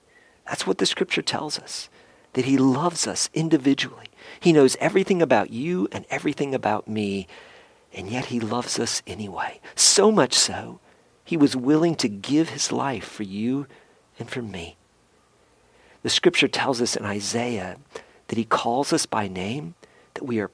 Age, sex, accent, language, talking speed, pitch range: 50-69, male, American, English, 165 wpm, 105-145 Hz